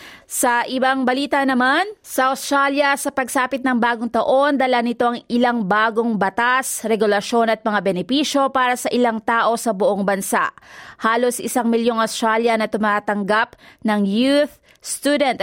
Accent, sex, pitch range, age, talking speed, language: native, female, 220-260 Hz, 20-39, 145 wpm, Filipino